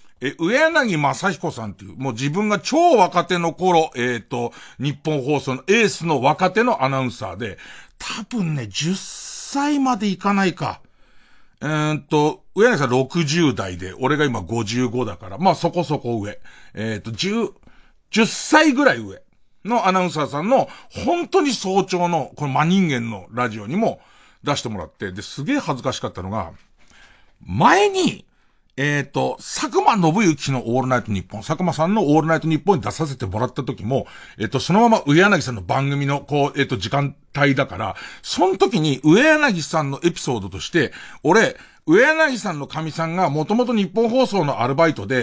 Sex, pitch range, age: male, 135-220 Hz, 50-69